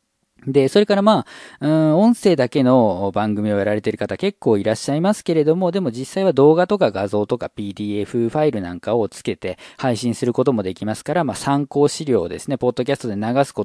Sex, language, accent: male, Japanese, native